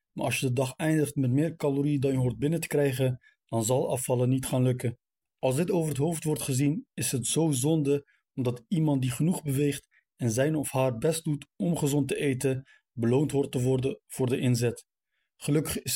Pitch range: 130-150 Hz